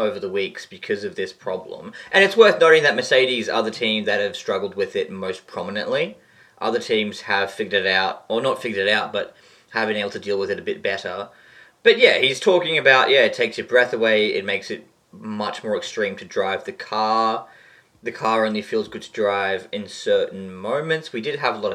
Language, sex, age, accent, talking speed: English, male, 20-39, Australian, 225 wpm